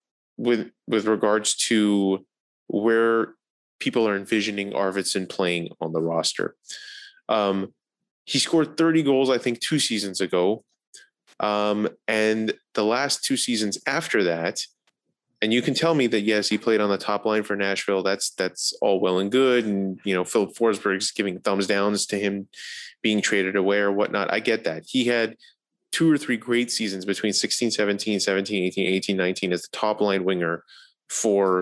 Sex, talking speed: male, 170 wpm